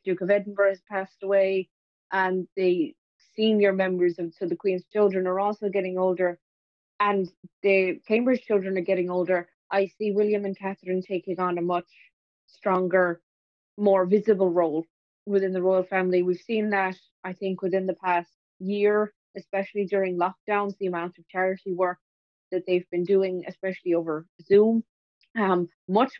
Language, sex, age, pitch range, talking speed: English, female, 20-39, 180-200 Hz, 160 wpm